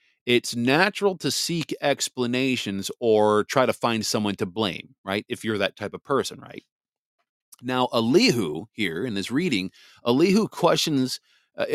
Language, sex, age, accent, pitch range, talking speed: English, male, 40-59, American, 105-140 Hz, 150 wpm